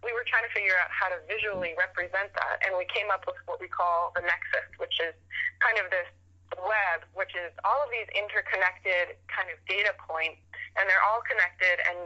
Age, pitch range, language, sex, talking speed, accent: 20-39, 175-210 Hz, English, female, 210 wpm, American